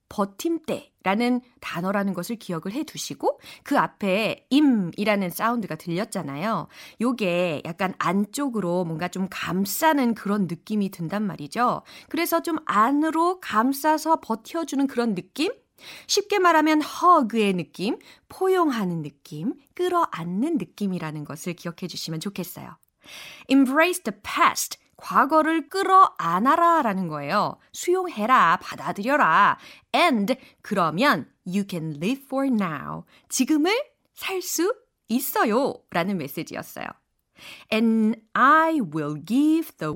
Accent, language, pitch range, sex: native, Korean, 180-295 Hz, female